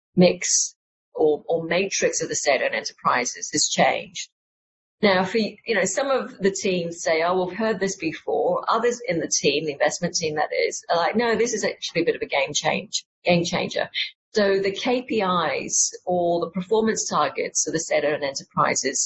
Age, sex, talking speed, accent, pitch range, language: 40-59, female, 185 wpm, British, 170-225 Hz, English